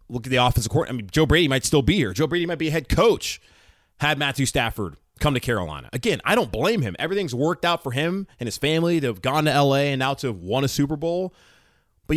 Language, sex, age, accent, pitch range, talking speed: English, male, 20-39, American, 120-170 Hz, 260 wpm